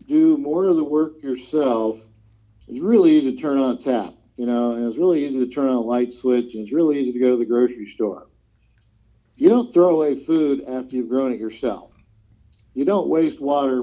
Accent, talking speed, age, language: American, 215 wpm, 50-69, English